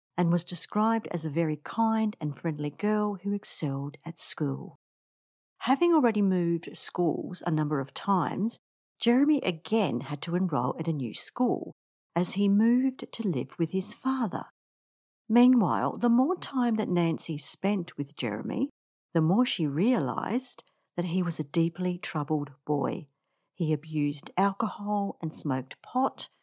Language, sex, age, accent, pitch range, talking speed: English, female, 50-69, Australian, 155-230 Hz, 150 wpm